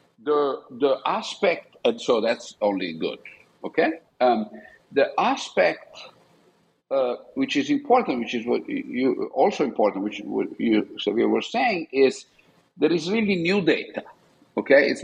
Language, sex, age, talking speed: English, male, 50-69, 145 wpm